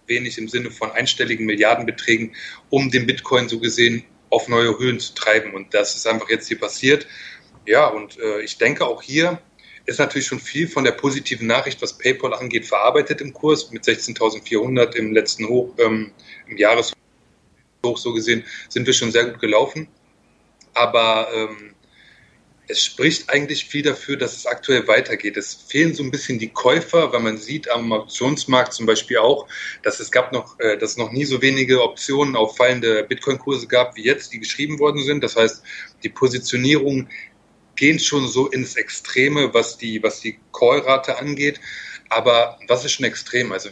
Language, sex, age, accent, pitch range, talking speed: German, male, 30-49, German, 115-140 Hz, 175 wpm